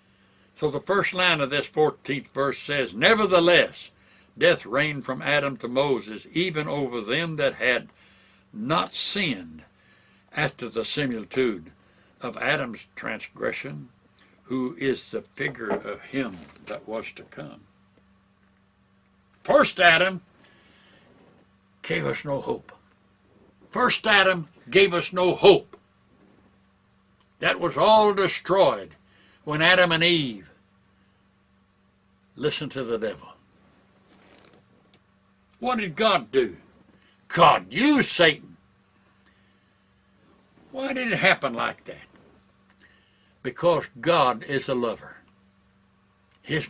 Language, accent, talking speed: English, American, 105 wpm